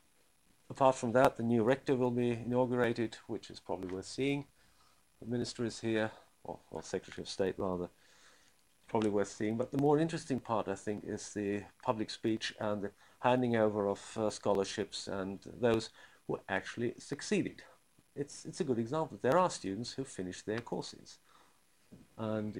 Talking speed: 165 wpm